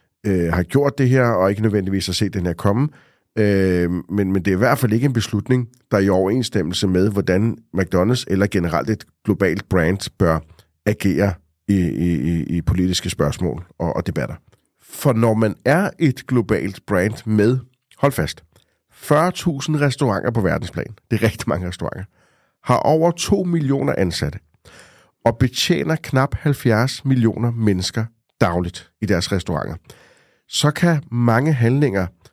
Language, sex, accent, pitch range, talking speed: Danish, male, native, 90-125 Hz, 160 wpm